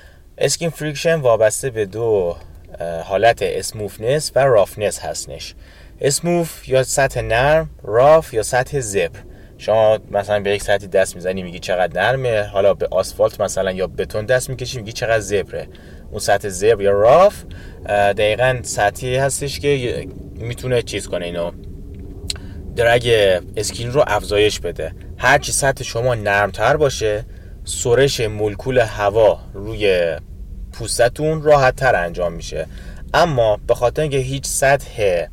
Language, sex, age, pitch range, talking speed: Persian, male, 30-49, 95-130 Hz, 130 wpm